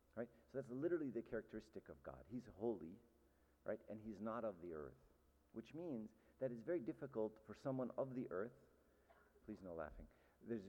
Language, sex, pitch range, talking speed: English, male, 75-120 Hz, 170 wpm